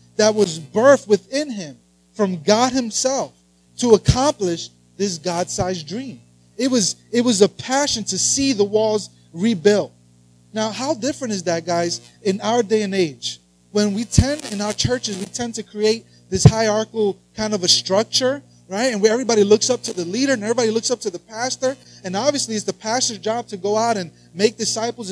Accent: American